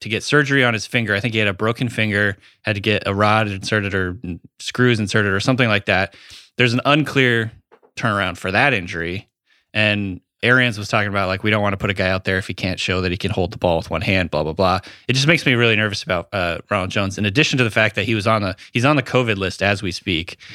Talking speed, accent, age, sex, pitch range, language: 270 wpm, American, 20-39, male, 95-120 Hz, English